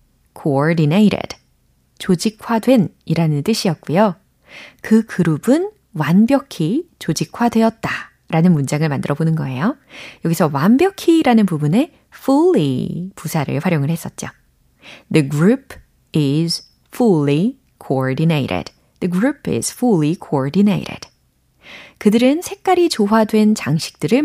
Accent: native